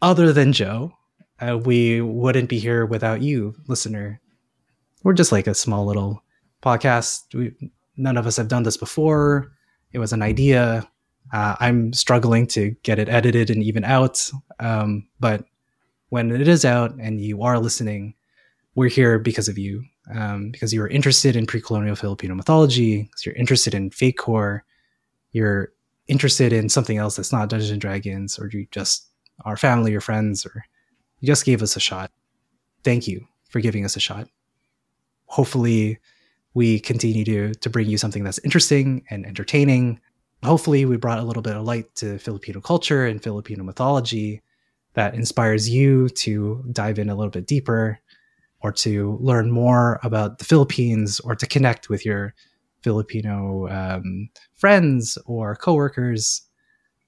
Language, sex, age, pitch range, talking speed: English, male, 20-39, 105-130 Hz, 160 wpm